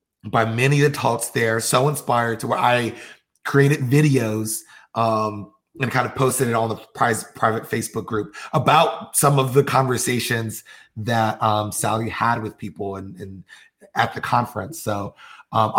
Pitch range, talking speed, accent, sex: 105-140 Hz, 160 wpm, American, male